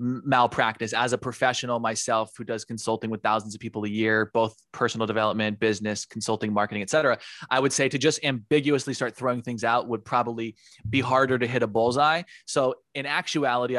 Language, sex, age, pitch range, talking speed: English, male, 20-39, 115-140 Hz, 185 wpm